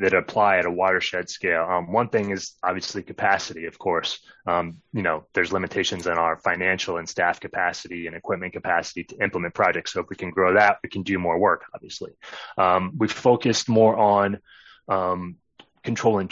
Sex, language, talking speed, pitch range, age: male, English, 185 wpm, 90-115 Hz, 20-39